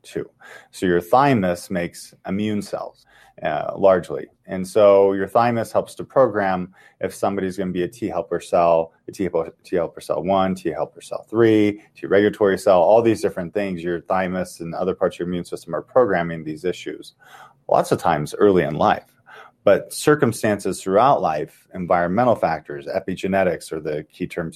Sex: male